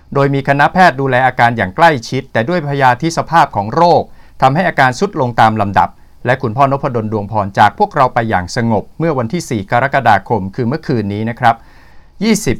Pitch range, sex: 95-130 Hz, male